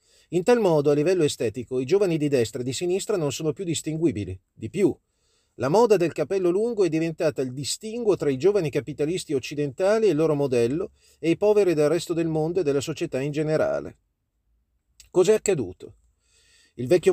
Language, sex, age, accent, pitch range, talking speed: Italian, male, 40-59, native, 135-175 Hz, 185 wpm